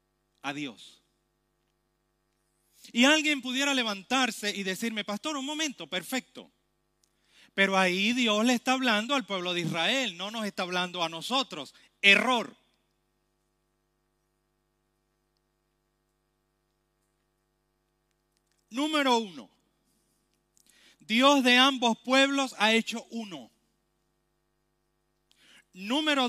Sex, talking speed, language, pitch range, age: male, 90 wpm, Romanian, 195-265 Hz, 40-59